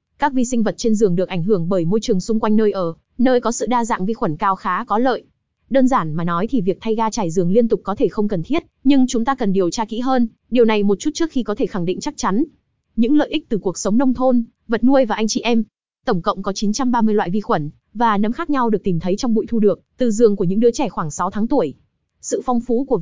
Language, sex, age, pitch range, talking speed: Vietnamese, female, 20-39, 200-250 Hz, 285 wpm